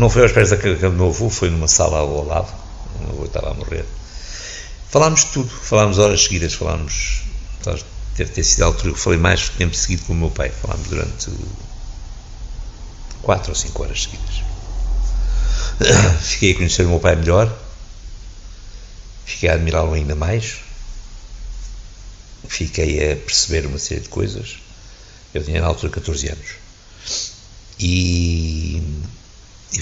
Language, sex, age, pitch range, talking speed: Portuguese, male, 60-79, 85-105 Hz, 145 wpm